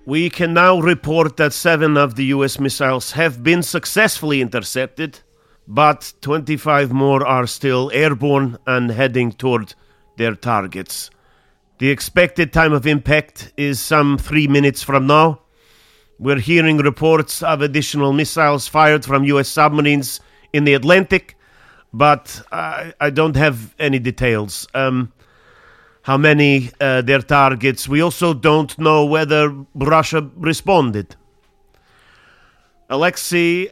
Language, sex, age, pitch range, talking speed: English, male, 40-59, 135-155 Hz, 125 wpm